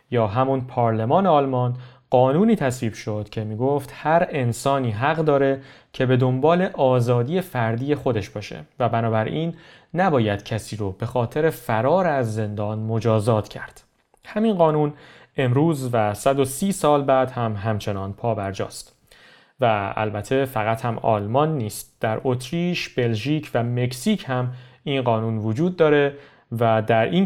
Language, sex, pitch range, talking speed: Persian, male, 115-150 Hz, 140 wpm